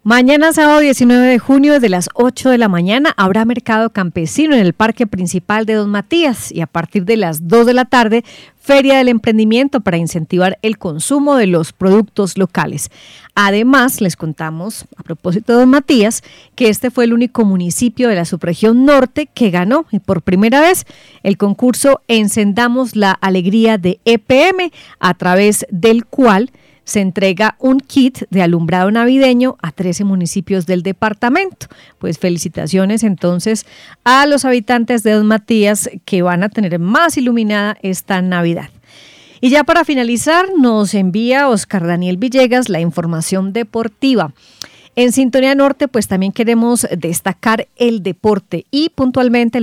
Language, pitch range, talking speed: Spanish, 190-250 Hz, 155 wpm